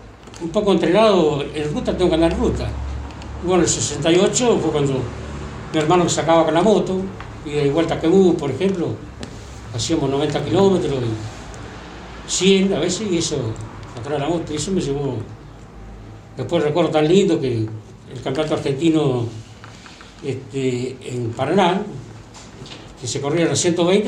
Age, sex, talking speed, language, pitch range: 60-79, male, 150 wpm, Spanish, 120-180 Hz